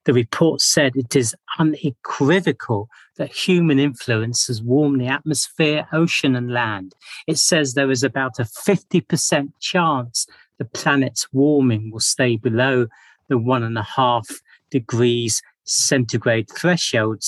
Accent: British